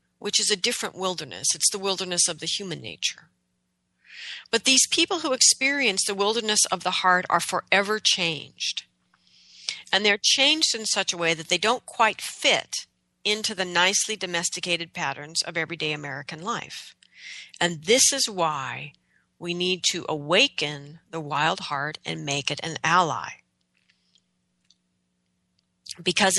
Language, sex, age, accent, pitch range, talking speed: English, female, 40-59, American, 155-205 Hz, 145 wpm